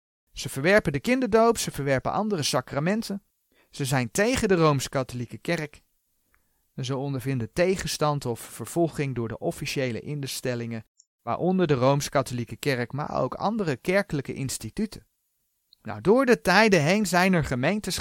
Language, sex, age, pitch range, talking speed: Dutch, male, 40-59, 130-200 Hz, 130 wpm